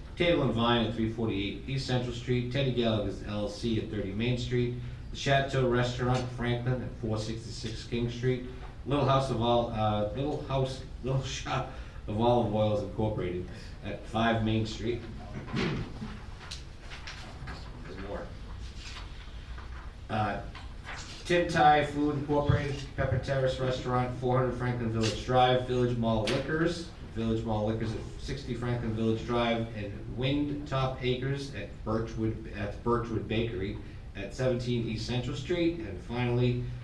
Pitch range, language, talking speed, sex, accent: 110-125 Hz, English, 130 wpm, male, American